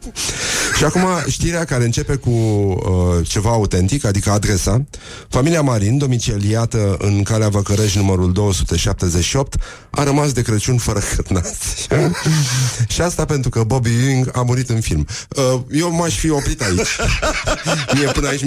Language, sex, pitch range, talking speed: Romanian, male, 100-130 Hz, 145 wpm